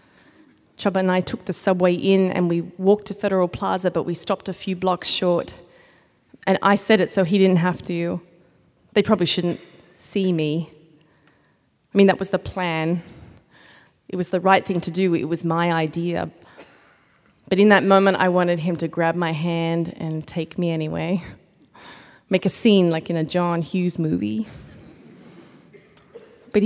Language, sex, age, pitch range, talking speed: English, female, 20-39, 175-220 Hz, 170 wpm